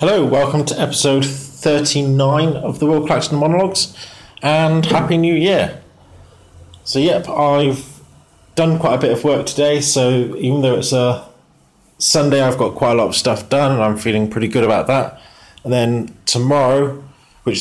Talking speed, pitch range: 165 wpm, 95-135 Hz